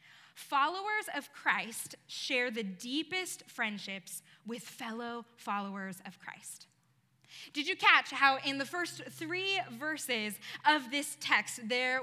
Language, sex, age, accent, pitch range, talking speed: English, female, 10-29, American, 245-330 Hz, 125 wpm